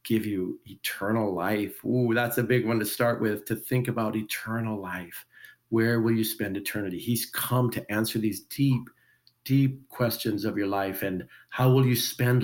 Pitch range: 110-130 Hz